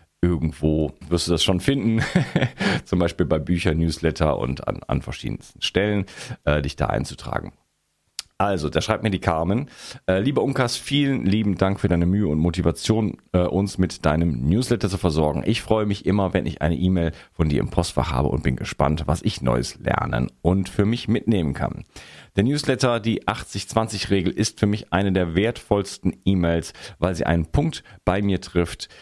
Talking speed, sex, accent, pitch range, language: 175 wpm, male, German, 80-105 Hz, German